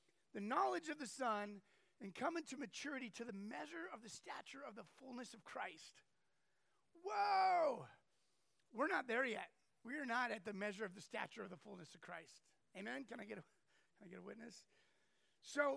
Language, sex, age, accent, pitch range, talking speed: English, male, 30-49, American, 210-260 Hz, 190 wpm